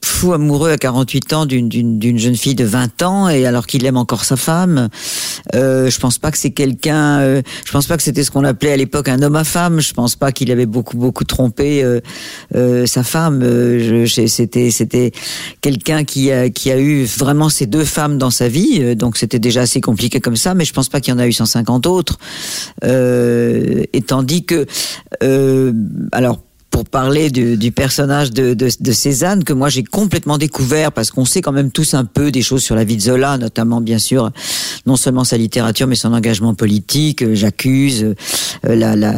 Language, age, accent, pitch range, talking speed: French, 50-69, French, 120-145 Hz, 210 wpm